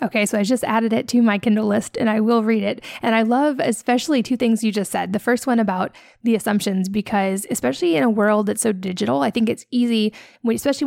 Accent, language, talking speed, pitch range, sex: American, English, 235 wpm, 210-245 Hz, female